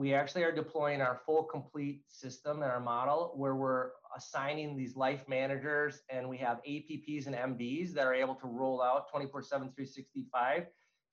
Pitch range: 140-175 Hz